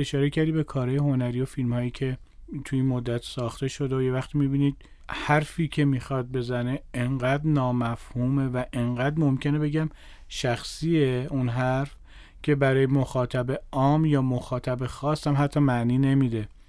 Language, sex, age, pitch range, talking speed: Persian, male, 40-59, 120-140 Hz, 150 wpm